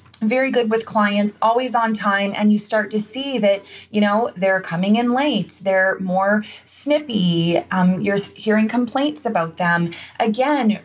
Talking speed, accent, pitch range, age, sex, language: 160 wpm, American, 190-225 Hz, 20-39, female, English